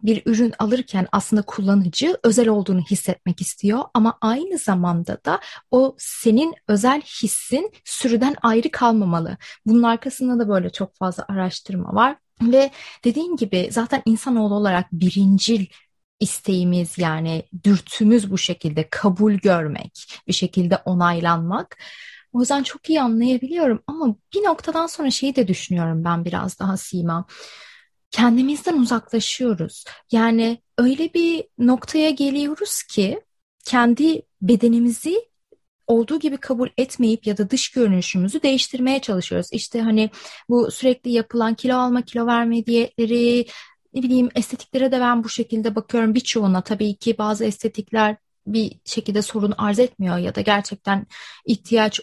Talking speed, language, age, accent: 130 wpm, Turkish, 30-49, native